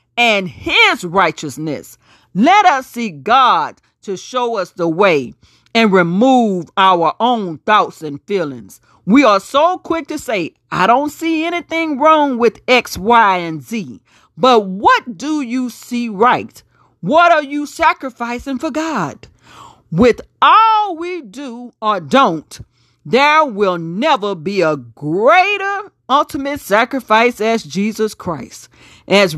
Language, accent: English, American